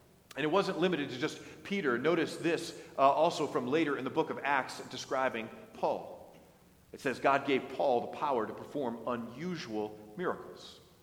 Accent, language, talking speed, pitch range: American, English, 170 wpm, 125-170 Hz